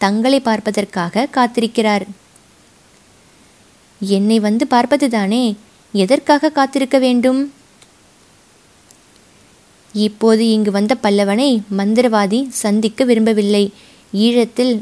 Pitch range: 210-250 Hz